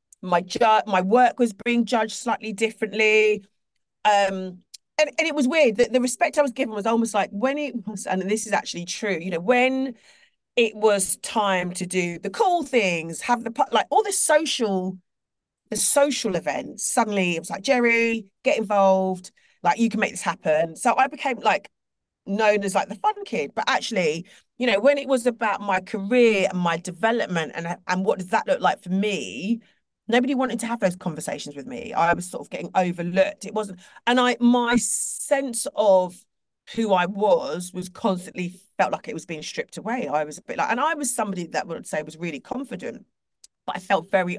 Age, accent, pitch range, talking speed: 40-59, British, 185-240 Hz, 200 wpm